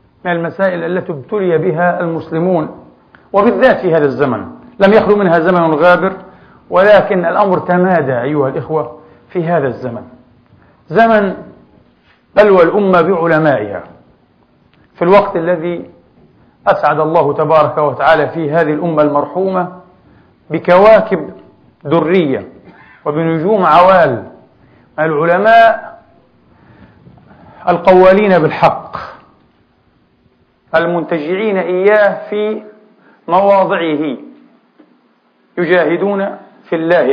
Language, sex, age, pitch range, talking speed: Arabic, male, 50-69, 165-200 Hz, 85 wpm